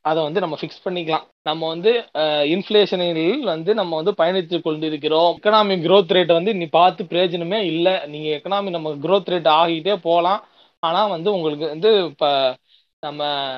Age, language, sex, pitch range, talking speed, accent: 20-39, Tamil, male, 160-200 Hz, 150 wpm, native